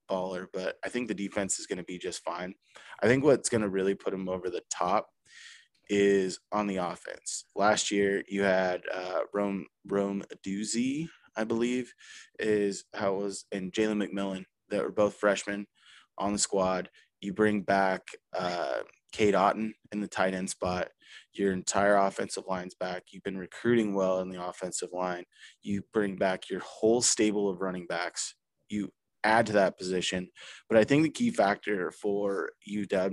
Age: 20-39